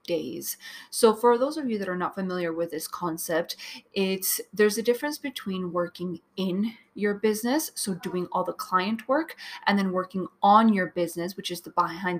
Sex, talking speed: female, 185 wpm